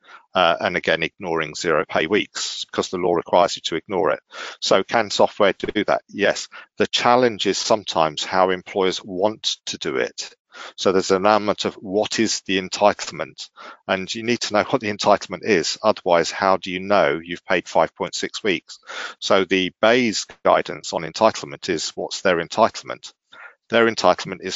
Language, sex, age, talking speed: English, male, 40-59, 175 wpm